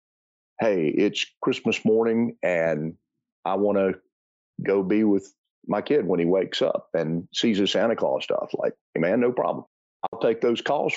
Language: English